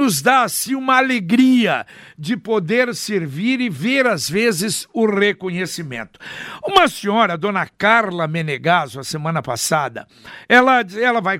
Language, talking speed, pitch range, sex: Portuguese, 130 wpm, 195-250 Hz, male